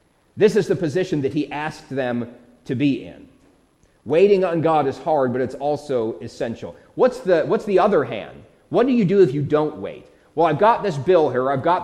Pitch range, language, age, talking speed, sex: 140-180 Hz, English, 30-49, 210 wpm, male